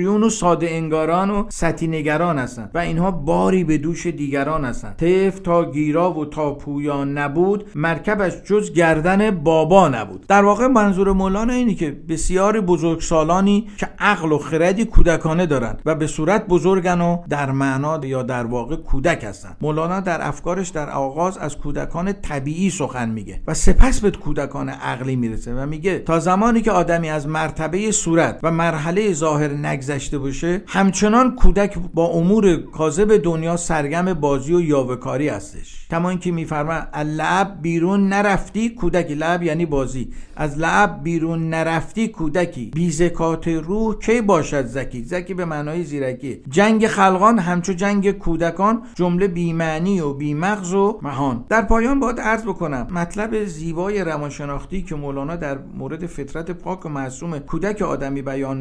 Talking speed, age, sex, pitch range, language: 150 wpm, 50-69, male, 150-190 Hz, Persian